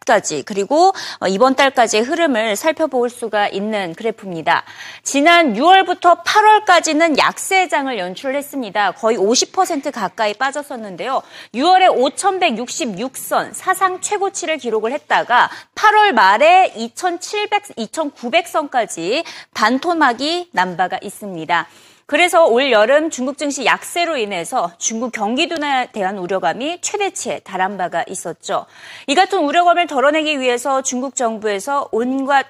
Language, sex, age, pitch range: Korean, female, 30-49, 215-345 Hz